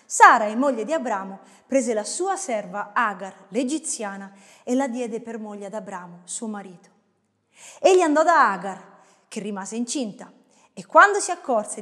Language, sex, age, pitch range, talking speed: Italian, female, 30-49, 215-325 Hz, 155 wpm